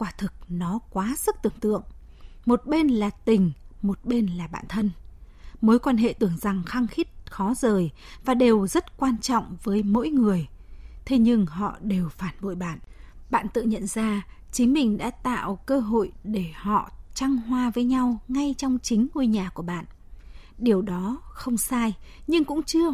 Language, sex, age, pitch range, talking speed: Vietnamese, female, 20-39, 200-260 Hz, 185 wpm